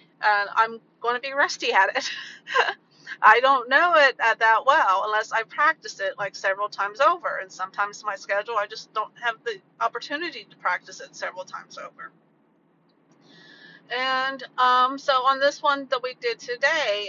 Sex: female